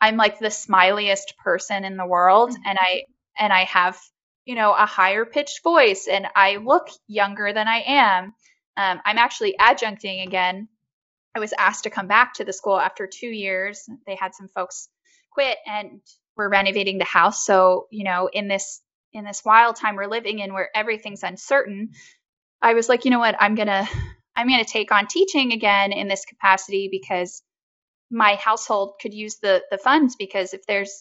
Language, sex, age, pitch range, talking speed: English, female, 10-29, 195-230 Hz, 190 wpm